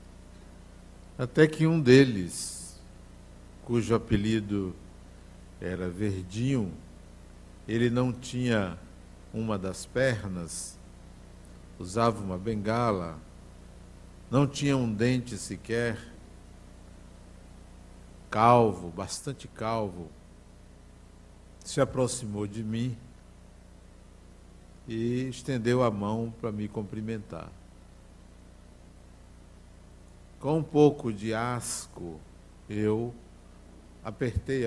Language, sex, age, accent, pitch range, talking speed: Portuguese, male, 60-79, Brazilian, 85-115 Hz, 75 wpm